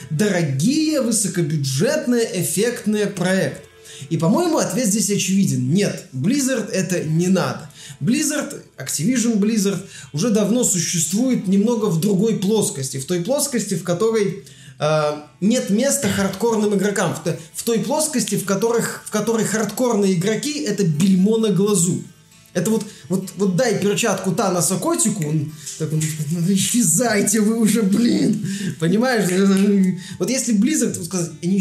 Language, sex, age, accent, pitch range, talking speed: Russian, male, 20-39, native, 165-220 Hz, 125 wpm